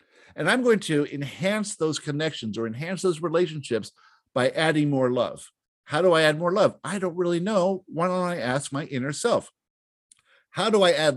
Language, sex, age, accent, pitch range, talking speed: English, male, 50-69, American, 130-180 Hz, 195 wpm